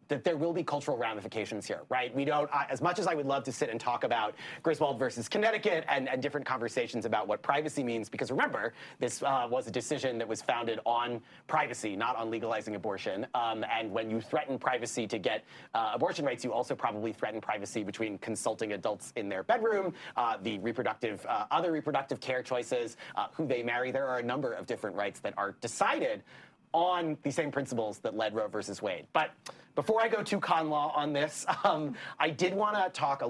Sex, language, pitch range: male, English, 115-155 Hz